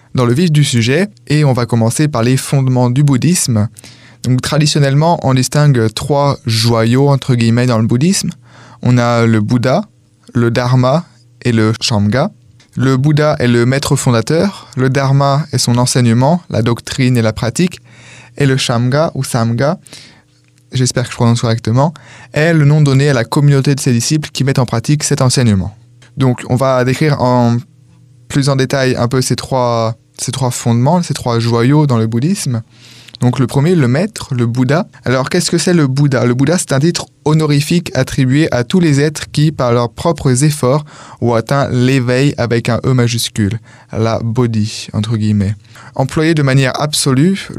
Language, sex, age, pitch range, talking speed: French, male, 20-39, 120-145 Hz, 180 wpm